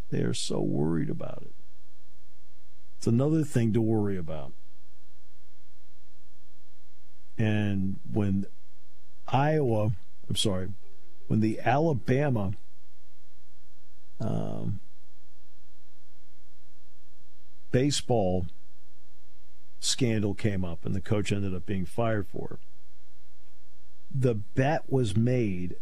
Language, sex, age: English, male, 50-69